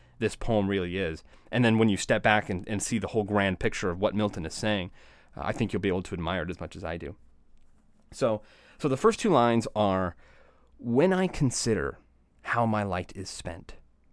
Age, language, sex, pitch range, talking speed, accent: 30-49, English, male, 85-115 Hz, 215 wpm, American